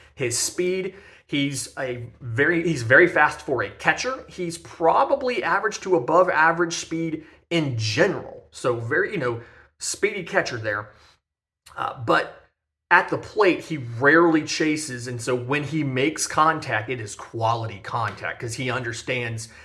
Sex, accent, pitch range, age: male, American, 110-140 Hz, 30-49